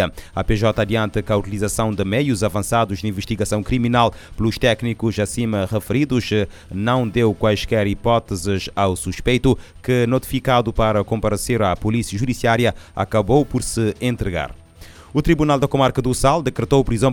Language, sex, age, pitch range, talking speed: Portuguese, male, 30-49, 100-120 Hz, 145 wpm